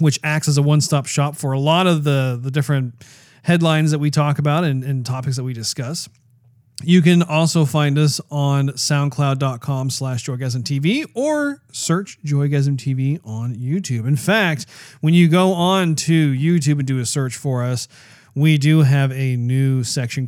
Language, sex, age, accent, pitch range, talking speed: English, male, 40-59, American, 125-160 Hz, 170 wpm